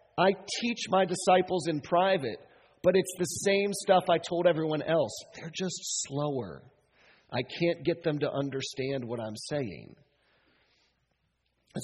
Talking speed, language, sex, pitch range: 140 wpm, English, male, 140-195 Hz